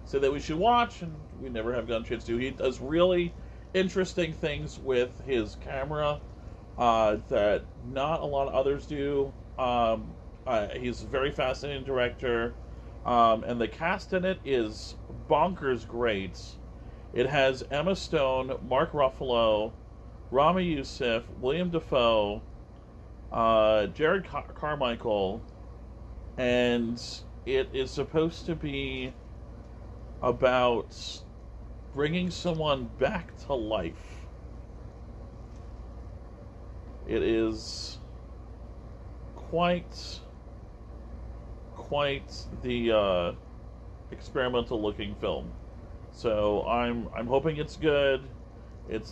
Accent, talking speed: American, 105 wpm